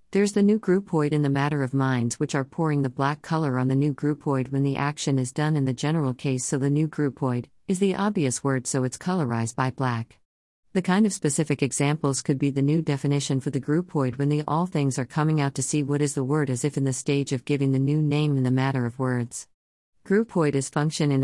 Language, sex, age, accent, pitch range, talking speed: English, female, 50-69, American, 130-155 Hz, 245 wpm